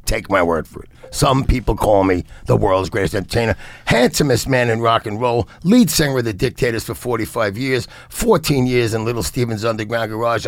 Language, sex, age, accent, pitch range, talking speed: English, male, 60-79, American, 105-130 Hz, 195 wpm